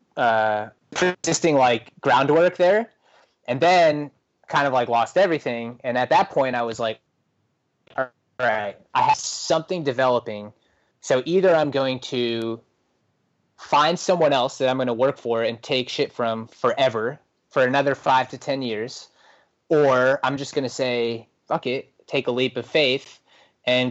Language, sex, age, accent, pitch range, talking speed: English, male, 20-39, American, 115-130 Hz, 160 wpm